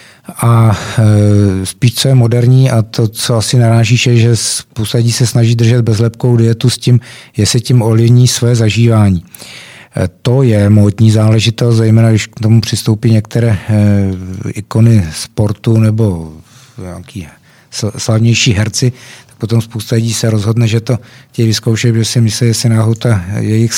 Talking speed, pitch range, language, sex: 155 wpm, 110-125 Hz, Czech, male